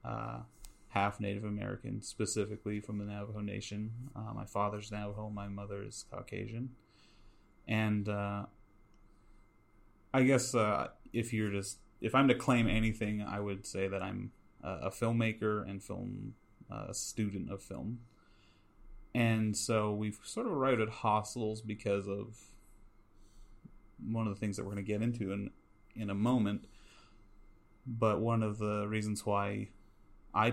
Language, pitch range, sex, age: English, 100-110 Hz, male, 30-49